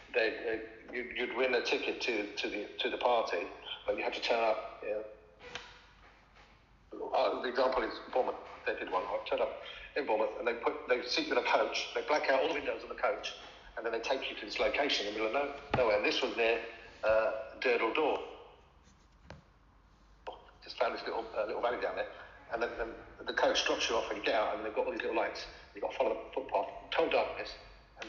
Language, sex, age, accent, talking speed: English, male, 50-69, British, 230 wpm